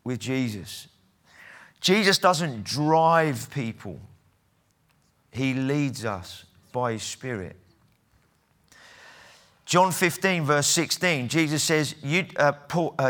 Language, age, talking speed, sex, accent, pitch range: English, 40-59, 90 wpm, male, British, 125-160 Hz